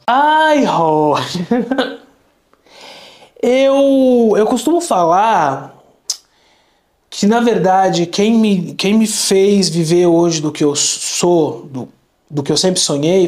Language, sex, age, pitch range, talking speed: Portuguese, male, 20-39, 150-195 Hz, 120 wpm